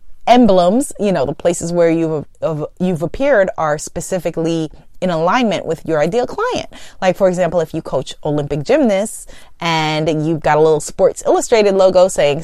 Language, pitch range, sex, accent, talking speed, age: English, 155-215 Hz, female, American, 170 wpm, 30-49